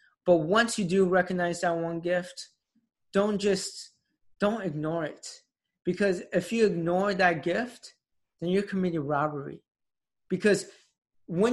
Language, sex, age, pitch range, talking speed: English, male, 20-39, 160-190 Hz, 130 wpm